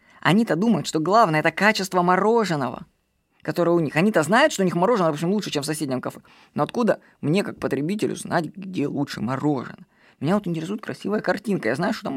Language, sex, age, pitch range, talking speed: Russian, female, 20-39, 160-215 Hz, 200 wpm